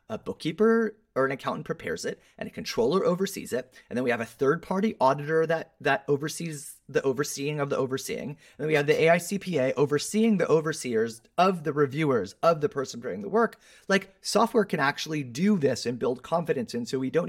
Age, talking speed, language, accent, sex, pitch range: 30-49, 205 wpm, English, American, male, 130-200 Hz